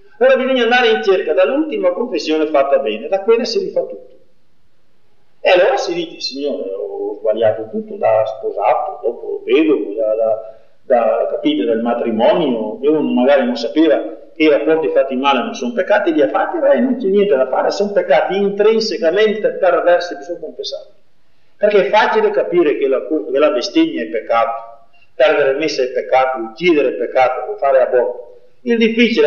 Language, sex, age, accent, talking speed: Italian, male, 40-59, native, 175 wpm